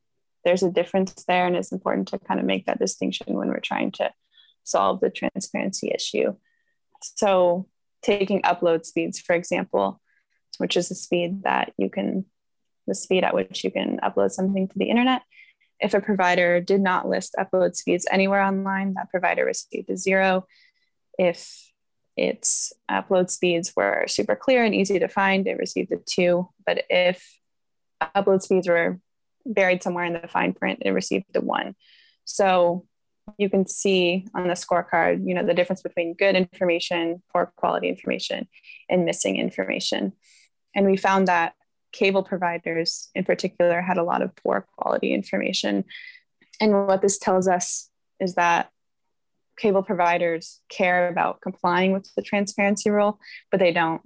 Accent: American